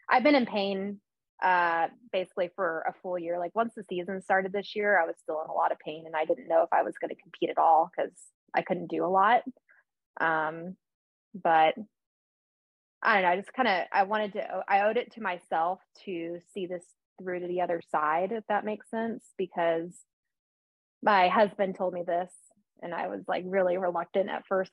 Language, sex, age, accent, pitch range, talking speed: English, female, 20-39, American, 175-205 Hz, 210 wpm